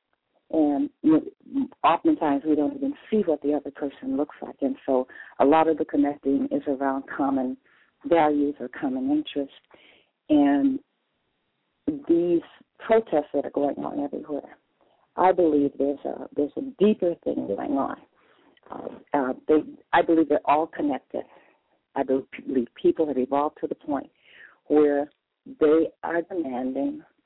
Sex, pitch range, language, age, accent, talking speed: female, 145-210 Hz, English, 40-59, American, 140 wpm